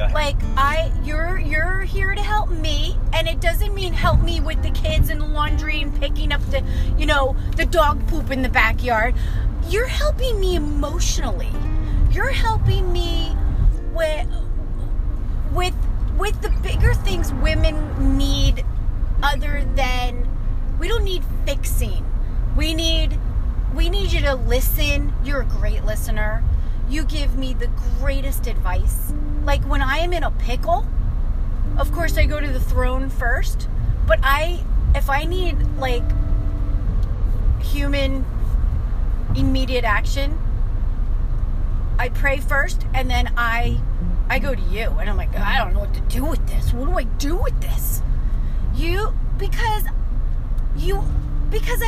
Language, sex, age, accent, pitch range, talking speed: English, female, 30-49, American, 90-105 Hz, 145 wpm